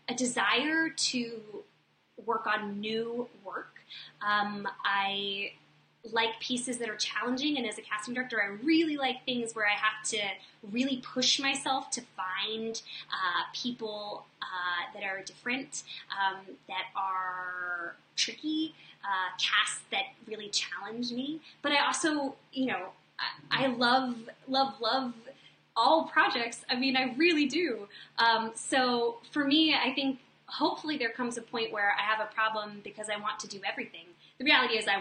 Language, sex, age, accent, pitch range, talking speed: English, female, 20-39, American, 205-260 Hz, 155 wpm